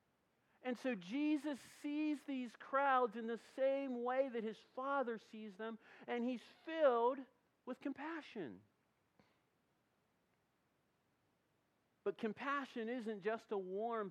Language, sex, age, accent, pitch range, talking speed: English, male, 40-59, American, 210-255 Hz, 110 wpm